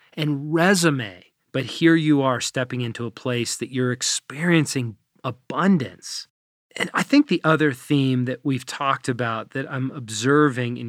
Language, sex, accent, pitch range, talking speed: English, male, American, 120-150 Hz, 155 wpm